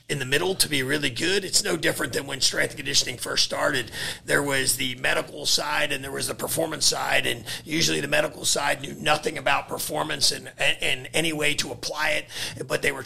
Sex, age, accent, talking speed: male, 40-59, American, 210 wpm